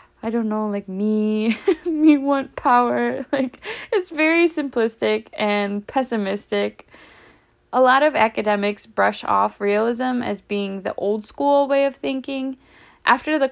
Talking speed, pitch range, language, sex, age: 140 wpm, 195-245 Hz, English, female, 10-29